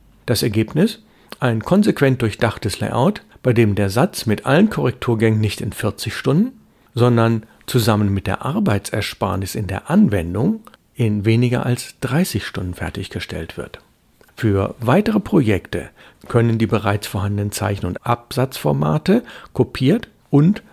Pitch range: 105-140 Hz